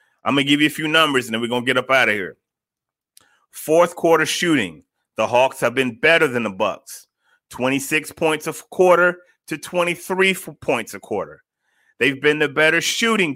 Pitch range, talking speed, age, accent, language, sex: 130-175 Hz, 195 wpm, 30-49, American, English, male